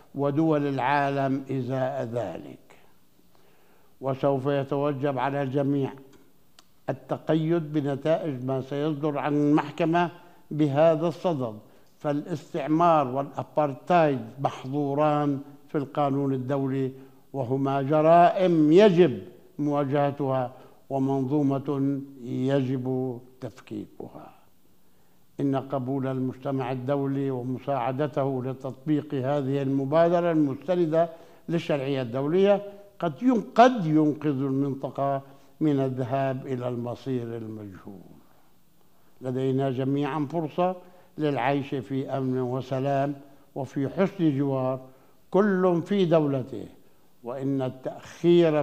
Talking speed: 80 wpm